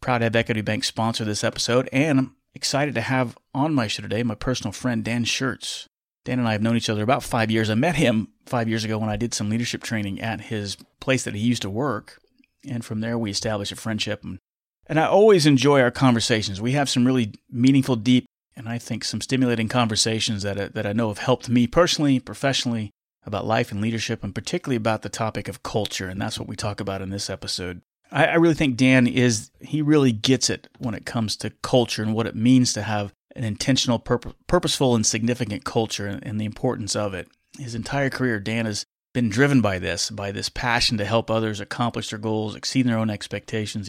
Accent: American